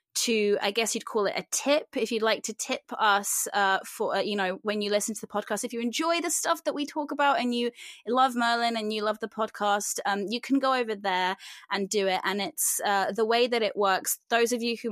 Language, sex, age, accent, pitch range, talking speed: English, female, 20-39, British, 185-230 Hz, 260 wpm